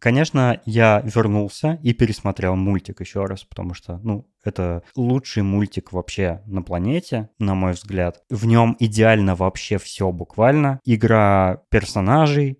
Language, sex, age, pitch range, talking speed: Russian, male, 20-39, 95-115 Hz, 135 wpm